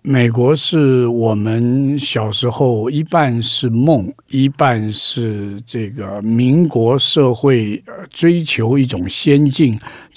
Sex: male